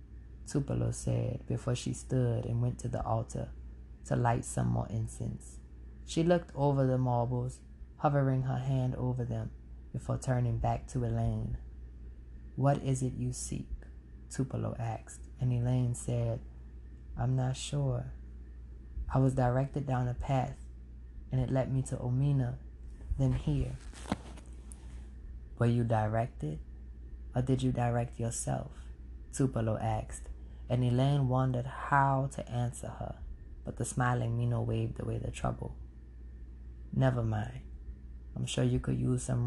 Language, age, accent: English, 20-39, American